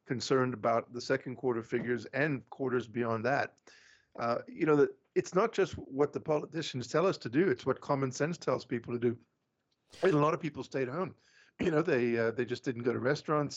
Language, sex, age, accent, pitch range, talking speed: English, male, 50-69, American, 120-140 Hz, 215 wpm